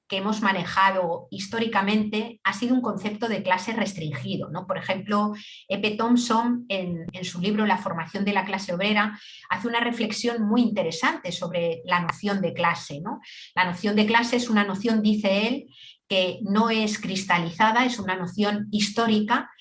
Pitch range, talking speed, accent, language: 190-240 Hz, 160 wpm, Spanish, Spanish